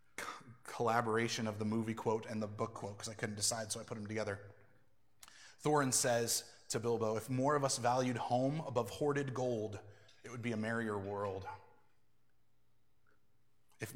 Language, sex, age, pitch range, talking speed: English, male, 20-39, 115-180 Hz, 165 wpm